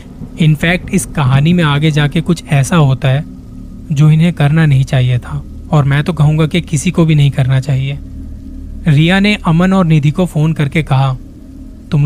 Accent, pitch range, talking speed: native, 135-165 Hz, 185 wpm